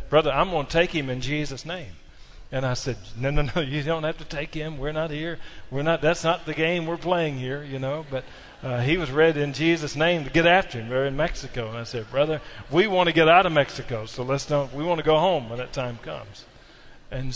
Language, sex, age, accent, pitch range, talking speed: English, male, 40-59, American, 135-190 Hz, 255 wpm